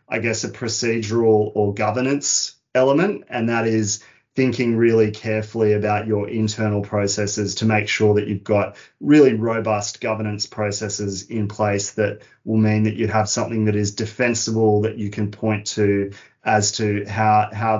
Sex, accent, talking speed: male, Australian, 160 wpm